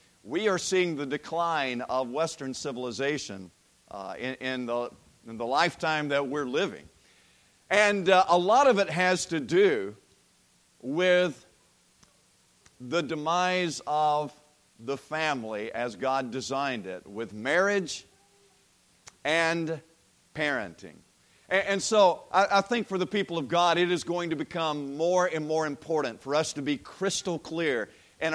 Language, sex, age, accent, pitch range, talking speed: English, male, 50-69, American, 140-185 Hz, 140 wpm